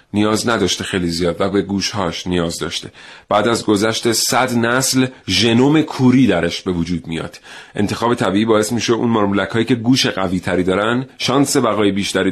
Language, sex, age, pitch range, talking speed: Persian, male, 40-59, 95-120 Hz, 170 wpm